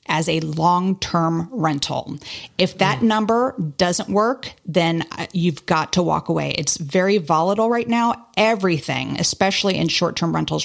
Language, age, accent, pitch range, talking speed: English, 30-49, American, 160-200 Hz, 150 wpm